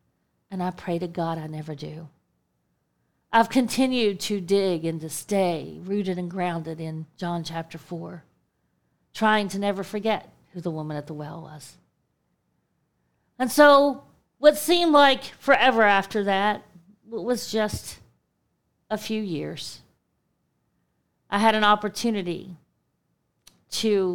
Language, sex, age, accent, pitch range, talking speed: English, female, 40-59, American, 185-225 Hz, 125 wpm